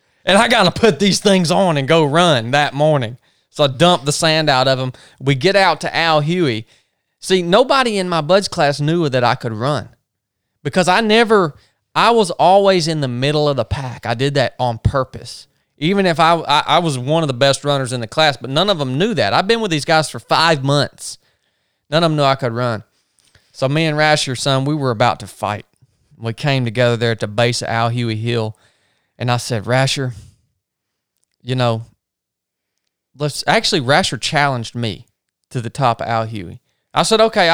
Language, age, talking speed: English, 20-39, 210 wpm